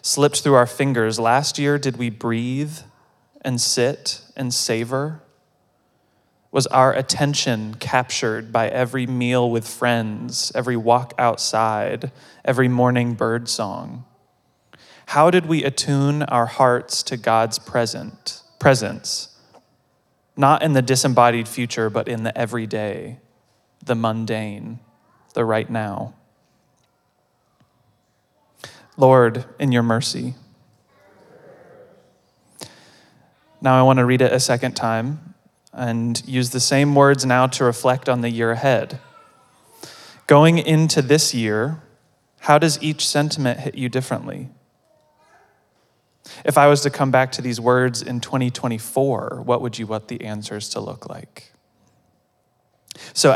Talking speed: 125 wpm